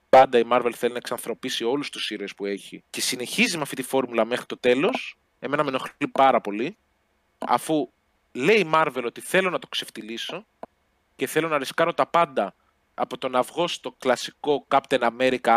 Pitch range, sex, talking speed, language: 125-160 Hz, male, 180 wpm, Greek